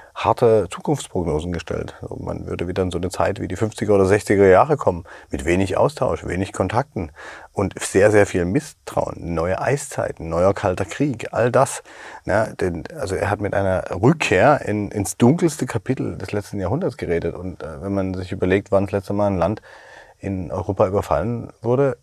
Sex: male